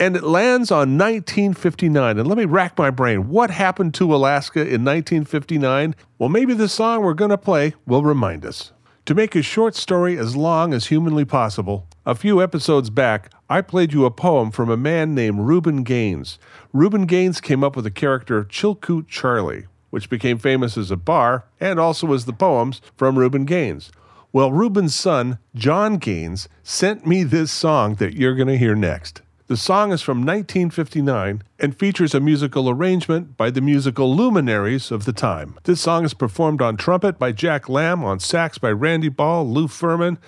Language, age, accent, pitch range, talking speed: English, 40-59, American, 120-175 Hz, 185 wpm